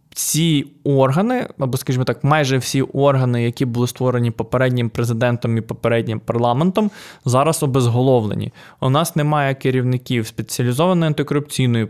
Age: 20-39